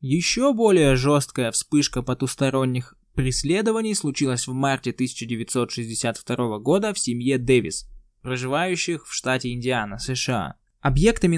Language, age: Russian, 20-39